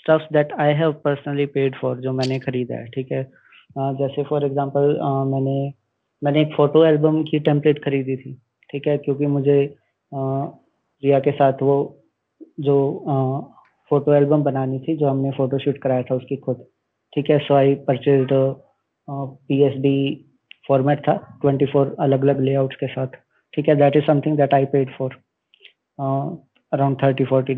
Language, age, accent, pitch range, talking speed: Hindi, 20-39, native, 135-145 Hz, 165 wpm